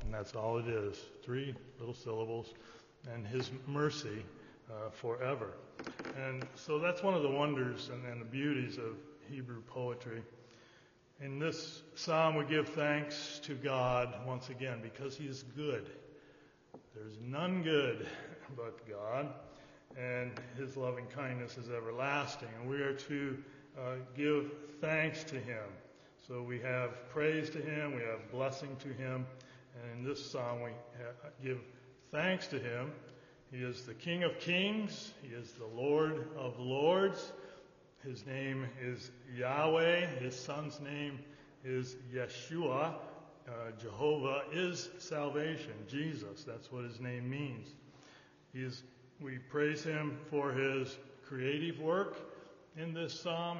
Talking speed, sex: 135 wpm, male